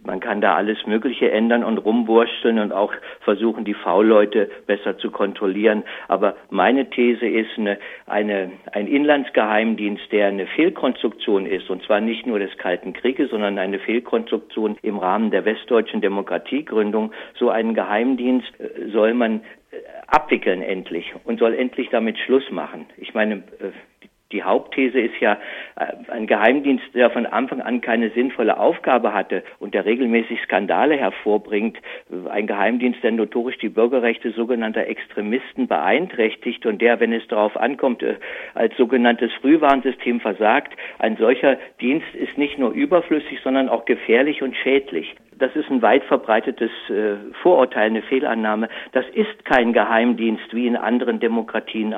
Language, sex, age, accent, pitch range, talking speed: German, male, 50-69, German, 110-130 Hz, 145 wpm